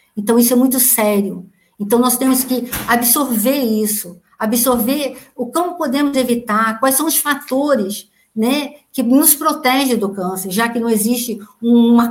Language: Portuguese